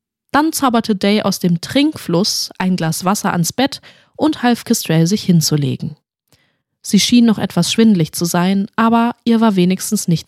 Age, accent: 20-39, German